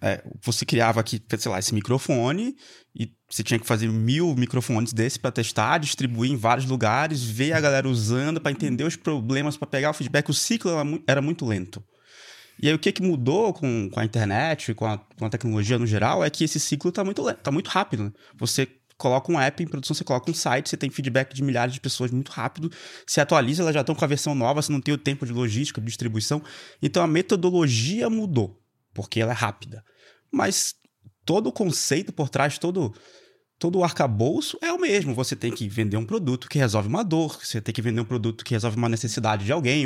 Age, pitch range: 20-39, 115-155 Hz